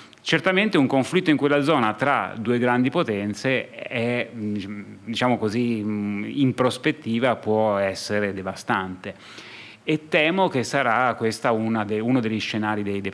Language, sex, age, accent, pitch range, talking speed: Italian, male, 30-49, native, 105-145 Hz, 130 wpm